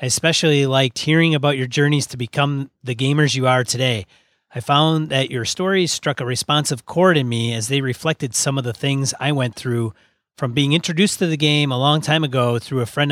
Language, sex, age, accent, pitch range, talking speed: English, male, 30-49, American, 115-145 Hz, 220 wpm